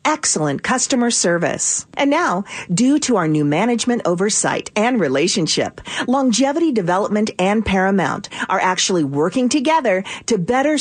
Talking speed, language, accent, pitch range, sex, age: 130 wpm, English, American, 185-280 Hz, female, 40-59